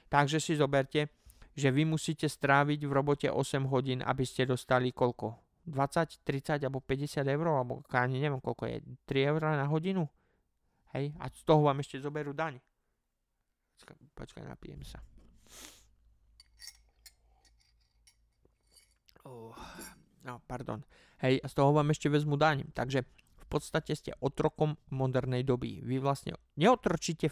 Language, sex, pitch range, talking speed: Slovak, male, 130-165 Hz, 135 wpm